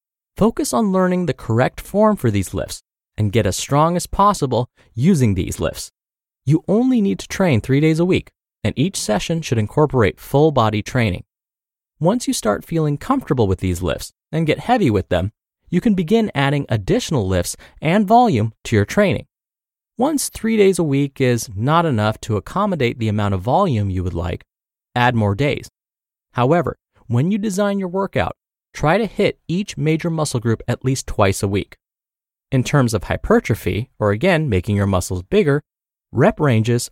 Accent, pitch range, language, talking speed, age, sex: American, 105-170 Hz, English, 175 wpm, 30-49, male